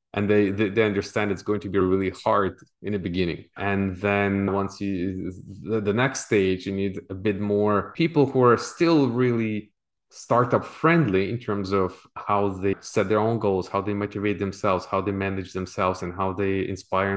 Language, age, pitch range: English, 20-39, 95-110 Hz